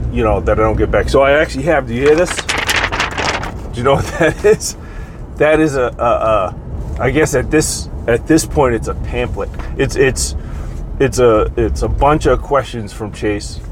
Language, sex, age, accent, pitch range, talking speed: English, male, 30-49, American, 100-135 Hz, 205 wpm